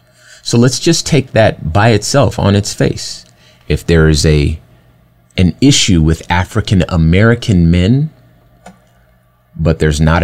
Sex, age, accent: male, 30-49, American